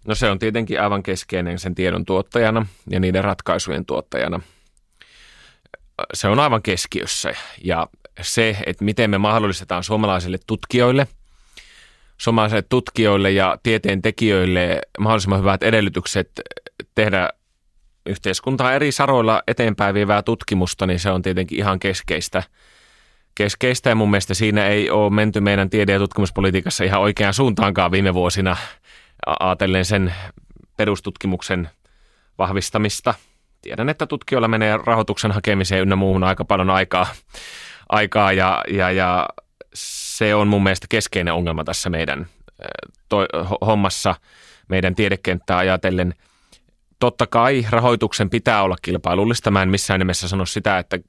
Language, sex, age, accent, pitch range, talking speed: Finnish, male, 30-49, native, 95-110 Hz, 125 wpm